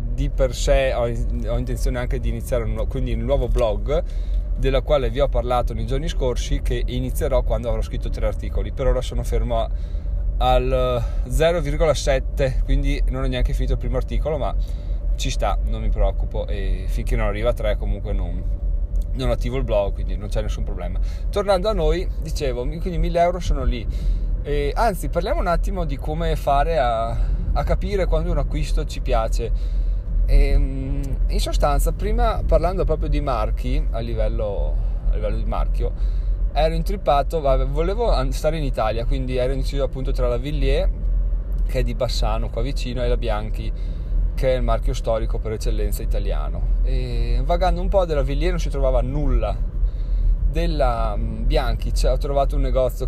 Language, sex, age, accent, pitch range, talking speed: Italian, male, 20-39, native, 110-140 Hz, 165 wpm